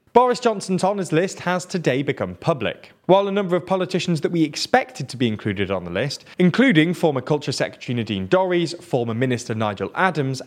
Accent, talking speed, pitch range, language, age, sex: British, 185 wpm, 115-180 Hz, English, 20-39, male